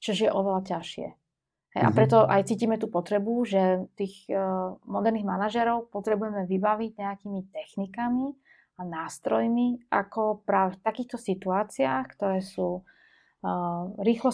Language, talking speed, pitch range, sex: Slovak, 115 wpm, 185-215 Hz, female